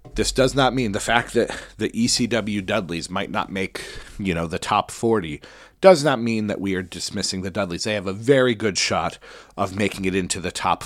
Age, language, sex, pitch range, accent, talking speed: 40-59, English, male, 95-135 Hz, American, 215 wpm